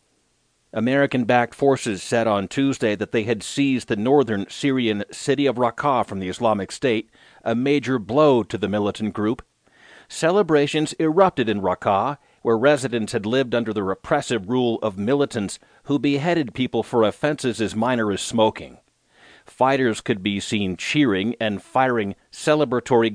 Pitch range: 110-145 Hz